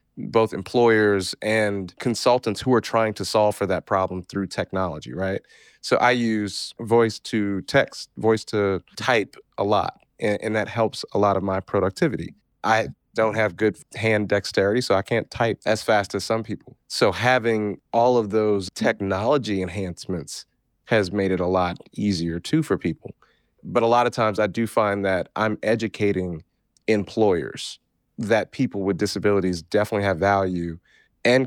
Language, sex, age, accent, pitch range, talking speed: English, male, 30-49, American, 95-110 Hz, 165 wpm